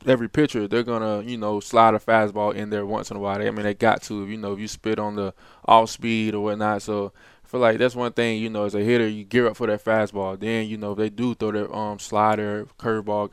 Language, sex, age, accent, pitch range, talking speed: English, male, 20-39, American, 105-115 Hz, 275 wpm